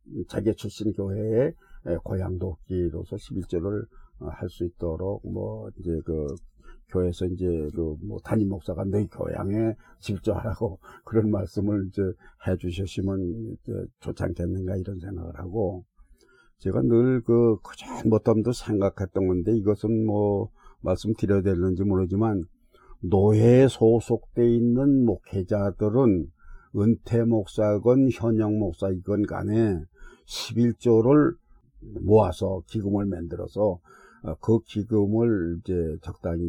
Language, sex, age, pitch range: Korean, male, 50-69, 90-110 Hz